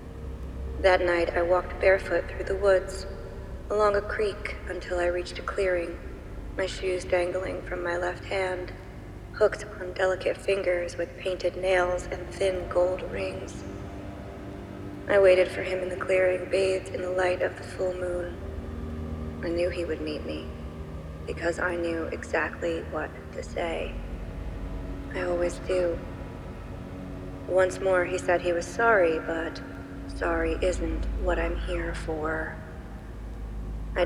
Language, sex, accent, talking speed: English, female, American, 140 wpm